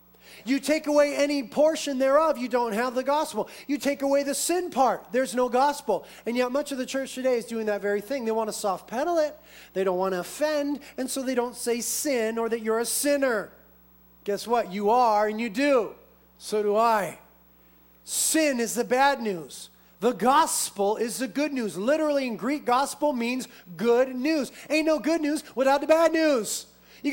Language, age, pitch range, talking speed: English, 30-49, 185-280 Hz, 200 wpm